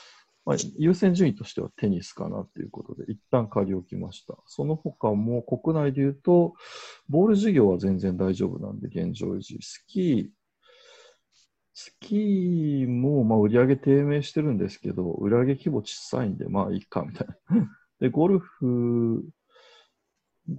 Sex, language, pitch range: male, Japanese, 105-170 Hz